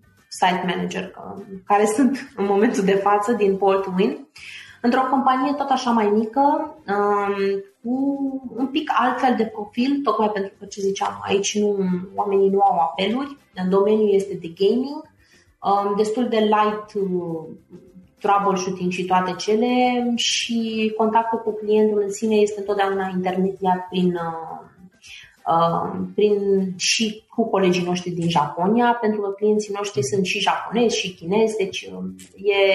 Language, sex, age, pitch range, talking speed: Romanian, female, 20-39, 185-220 Hz, 145 wpm